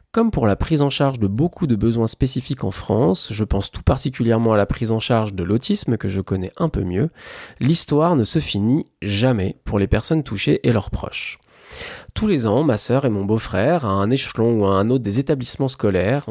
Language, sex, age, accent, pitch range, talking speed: French, male, 20-39, French, 105-135 Hz, 220 wpm